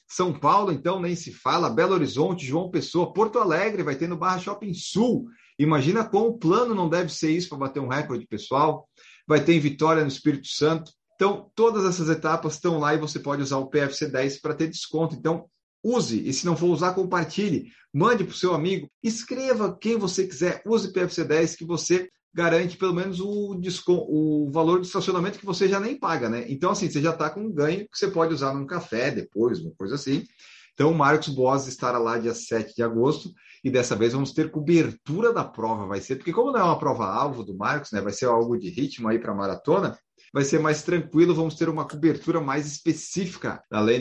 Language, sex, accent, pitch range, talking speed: Portuguese, male, Brazilian, 140-180 Hz, 215 wpm